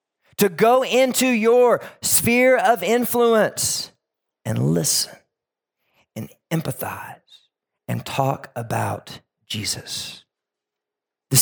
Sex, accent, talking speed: male, American, 85 wpm